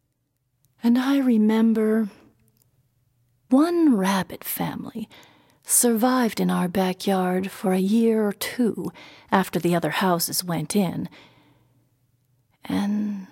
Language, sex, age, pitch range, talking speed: English, female, 40-59, 175-240 Hz, 100 wpm